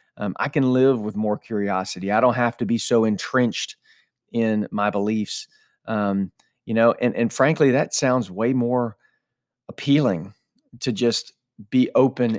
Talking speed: 155 wpm